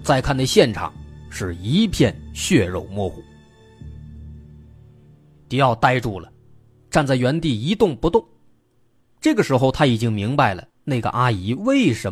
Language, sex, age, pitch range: Chinese, male, 30-49, 115-160 Hz